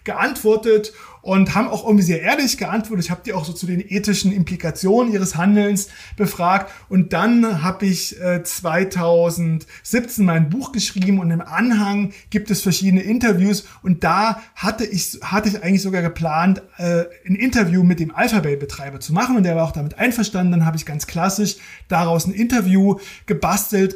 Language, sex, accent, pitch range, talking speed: German, male, German, 175-205 Hz, 170 wpm